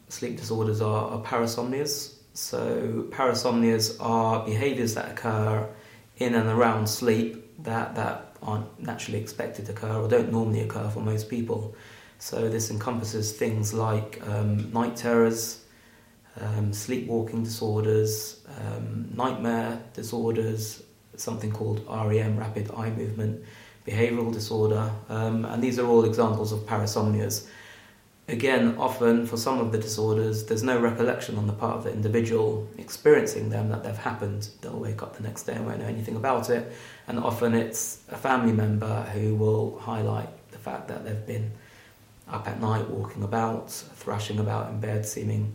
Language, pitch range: English, 110-115 Hz